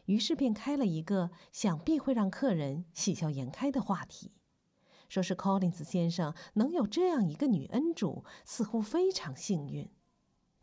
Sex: female